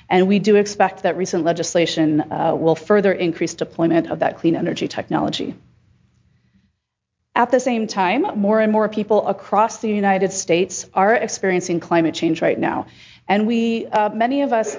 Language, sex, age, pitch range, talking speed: English, female, 30-49, 170-220 Hz, 165 wpm